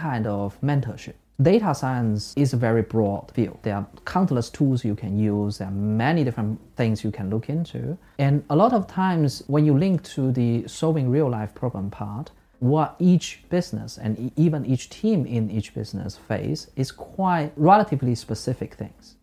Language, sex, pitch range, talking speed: English, male, 110-160 Hz, 180 wpm